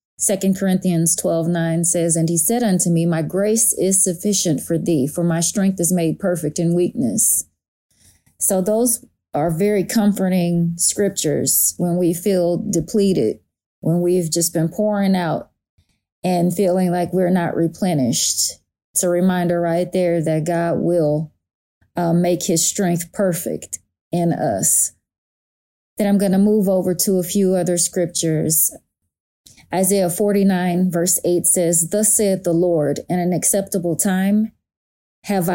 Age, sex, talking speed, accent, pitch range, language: 30-49, female, 145 wpm, American, 170-195 Hz, English